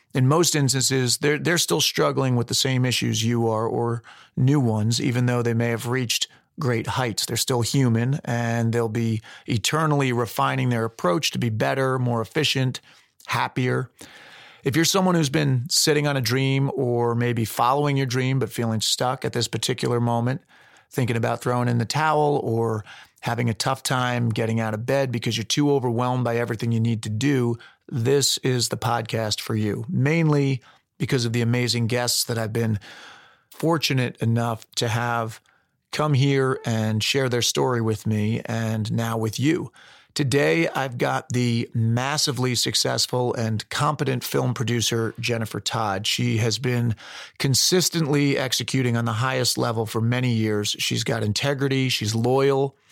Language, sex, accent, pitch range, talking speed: English, male, American, 115-135 Hz, 165 wpm